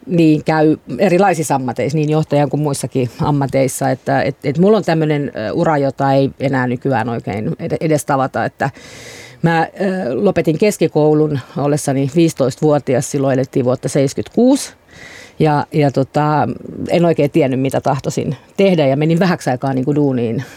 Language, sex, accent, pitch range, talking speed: Finnish, female, native, 135-175 Hz, 140 wpm